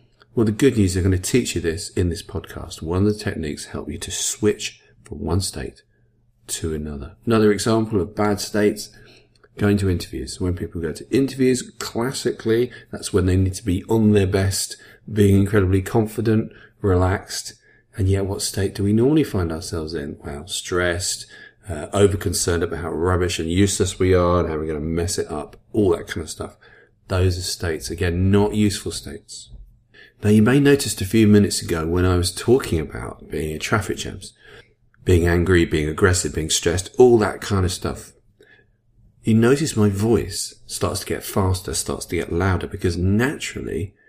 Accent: British